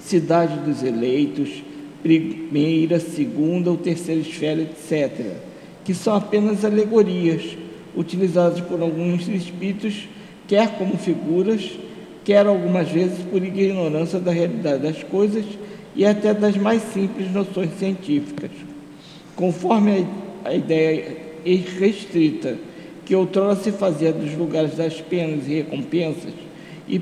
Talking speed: 115 wpm